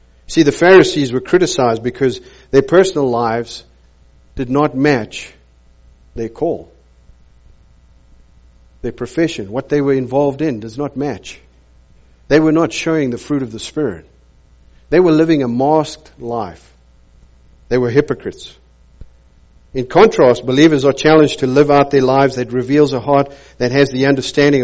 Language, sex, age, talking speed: English, male, 50-69, 145 wpm